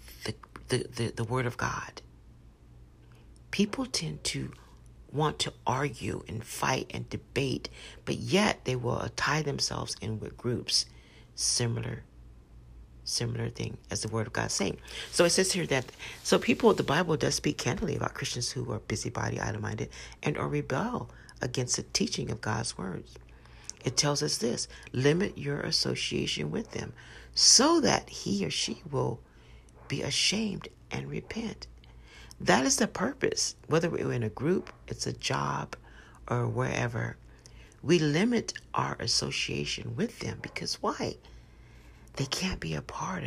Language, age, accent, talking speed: English, 50-69, American, 150 wpm